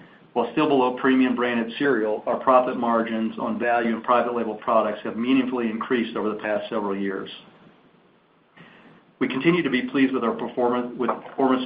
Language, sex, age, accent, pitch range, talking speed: English, male, 50-69, American, 110-130 Hz, 165 wpm